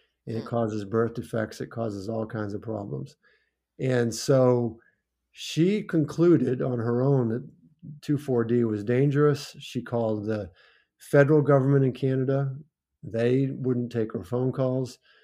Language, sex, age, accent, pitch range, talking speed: English, male, 50-69, American, 115-145 Hz, 135 wpm